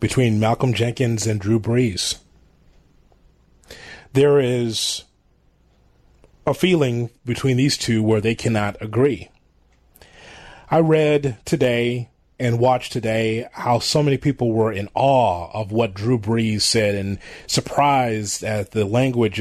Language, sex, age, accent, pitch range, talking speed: English, male, 30-49, American, 105-140 Hz, 125 wpm